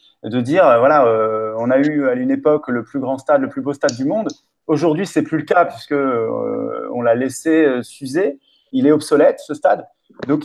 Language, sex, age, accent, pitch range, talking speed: French, male, 30-49, French, 135-165 Hz, 220 wpm